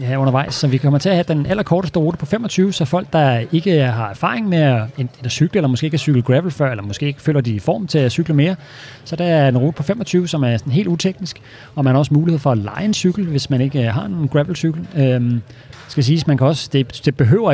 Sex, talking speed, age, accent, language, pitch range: male, 255 wpm, 30-49, native, Danish, 130-155 Hz